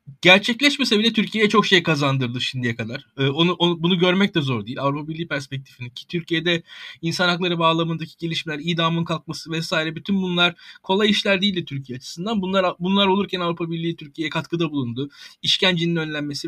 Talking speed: 165 wpm